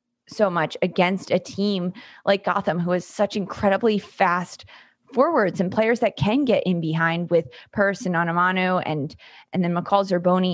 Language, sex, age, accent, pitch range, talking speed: English, female, 20-39, American, 165-210 Hz, 165 wpm